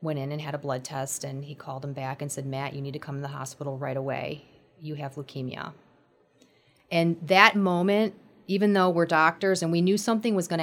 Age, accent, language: 30-49, American, English